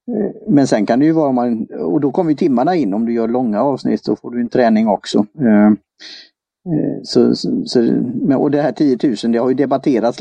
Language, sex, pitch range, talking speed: Swedish, male, 110-140 Hz, 205 wpm